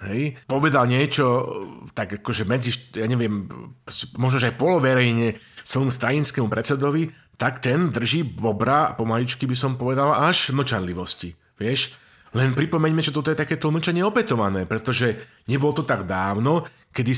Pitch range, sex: 115-140 Hz, male